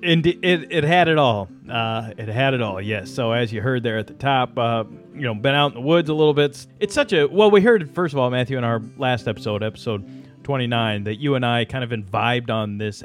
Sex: male